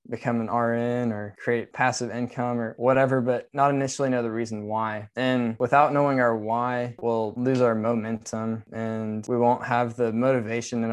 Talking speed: 175 wpm